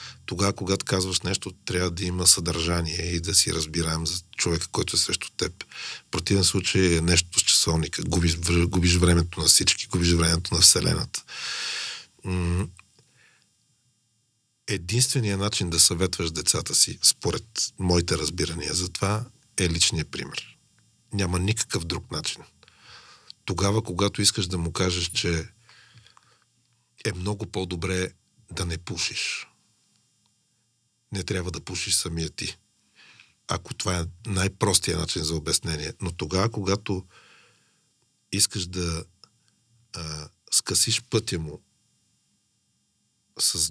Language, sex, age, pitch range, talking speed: Bulgarian, male, 40-59, 90-110 Hz, 120 wpm